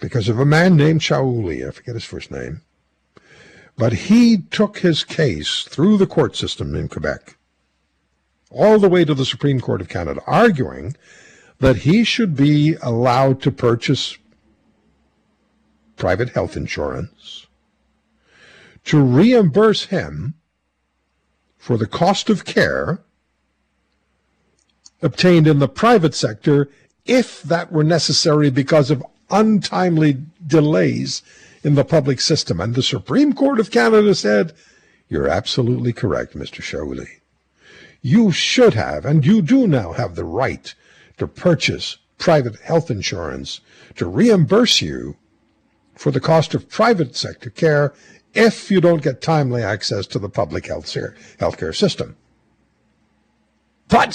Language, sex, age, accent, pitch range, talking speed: English, male, 60-79, American, 120-180 Hz, 130 wpm